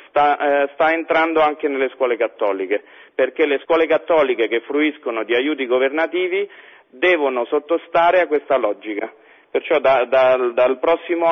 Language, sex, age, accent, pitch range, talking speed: Italian, male, 40-59, native, 125-170 Hz, 120 wpm